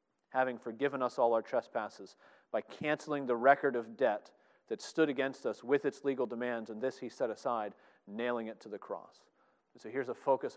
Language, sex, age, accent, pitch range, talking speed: English, male, 40-59, American, 125-150 Hz, 195 wpm